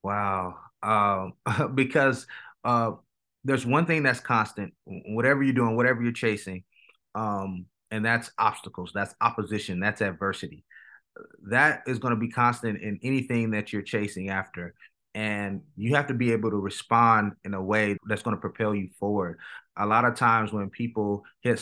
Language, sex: English, male